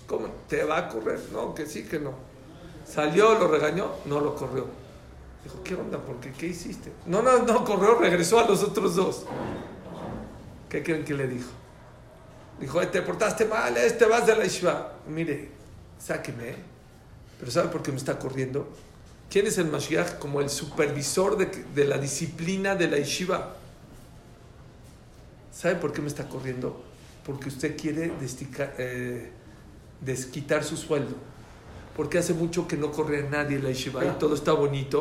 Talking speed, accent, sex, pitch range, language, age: 170 wpm, Mexican, male, 135-175 Hz, English, 50-69